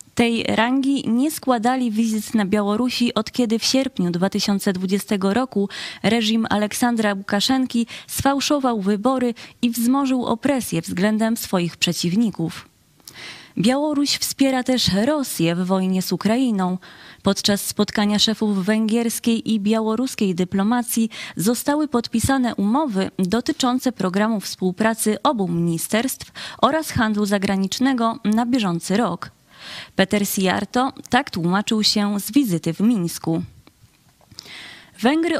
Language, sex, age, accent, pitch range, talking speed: Polish, female, 20-39, native, 200-250 Hz, 105 wpm